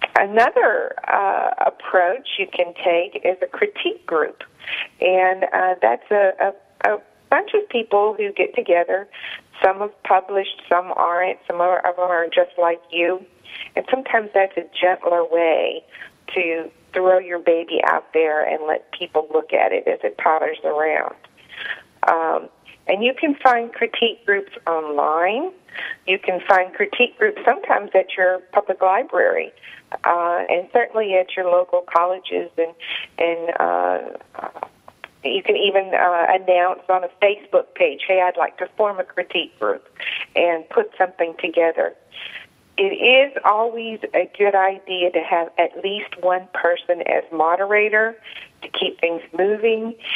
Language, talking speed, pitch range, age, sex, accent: English, 150 wpm, 175-220 Hz, 50-69, female, American